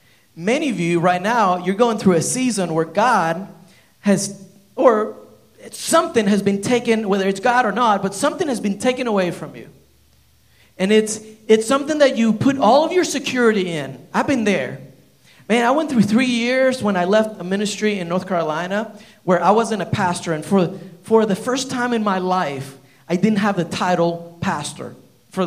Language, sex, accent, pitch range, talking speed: English, male, American, 185-245 Hz, 190 wpm